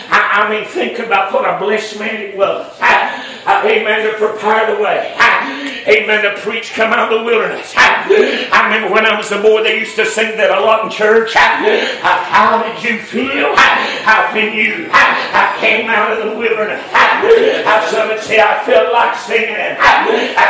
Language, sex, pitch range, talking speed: English, male, 220-245 Hz, 200 wpm